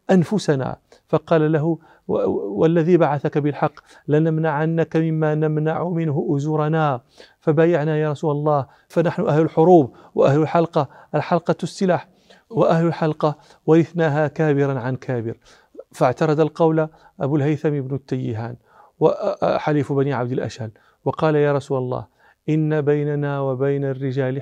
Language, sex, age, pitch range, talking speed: Arabic, male, 40-59, 135-160 Hz, 115 wpm